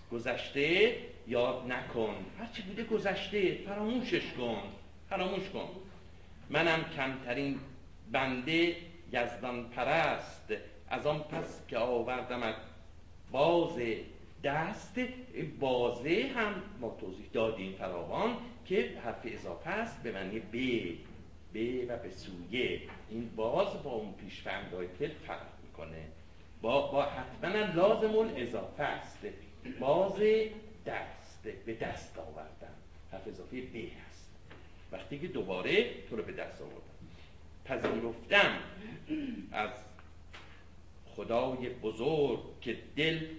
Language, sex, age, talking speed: Persian, male, 50-69, 110 wpm